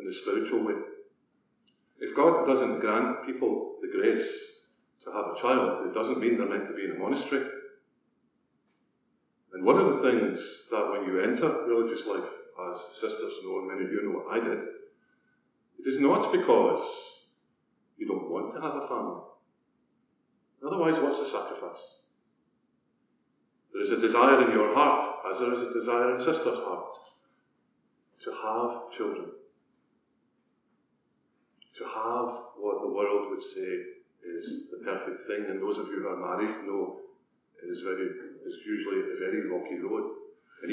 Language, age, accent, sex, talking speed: English, 50-69, British, male, 160 wpm